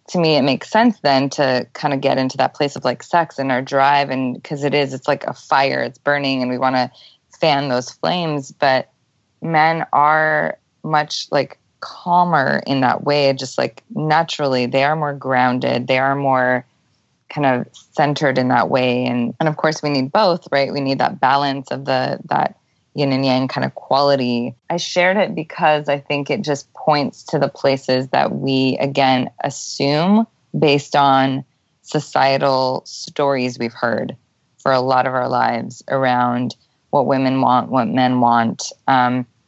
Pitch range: 130-150 Hz